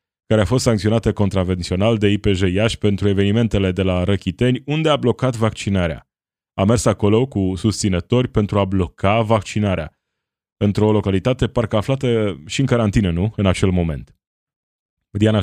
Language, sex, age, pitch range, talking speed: Romanian, male, 20-39, 95-115 Hz, 150 wpm